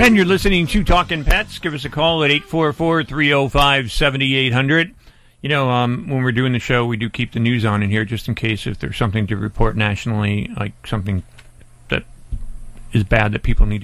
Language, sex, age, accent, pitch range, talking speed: English, male, 40-59, American, 105-130 Hz, 195 wpm